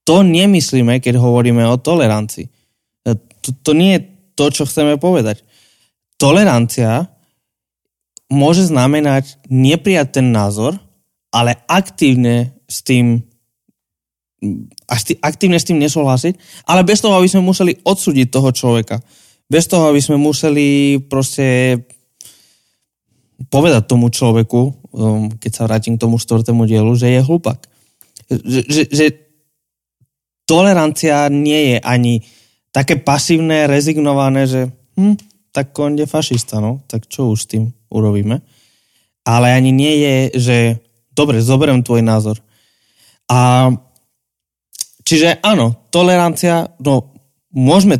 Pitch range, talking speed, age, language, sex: 115-150 Hz, 110 wpm, 20-39, Slovak, male